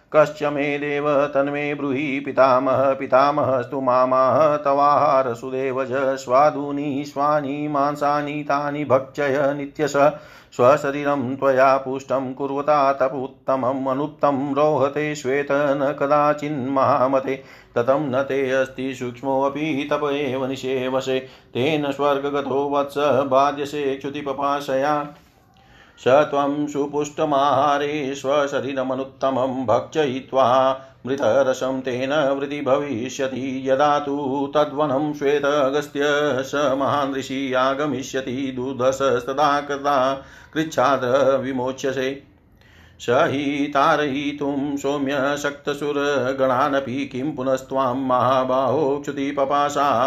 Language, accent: Hindi, native